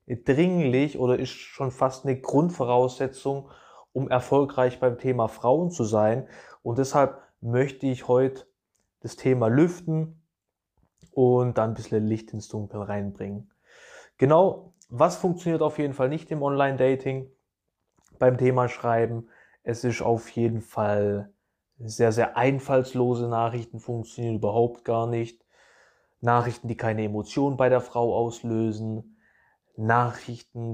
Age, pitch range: 20-39, 115-135 Hz